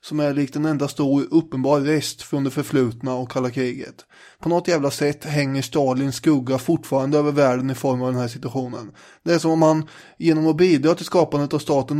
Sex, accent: male, Swedish